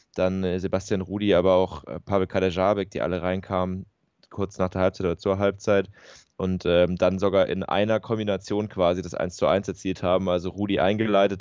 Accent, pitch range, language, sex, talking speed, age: German, 90-100 Hz, German, male, 175 wpm, 20-39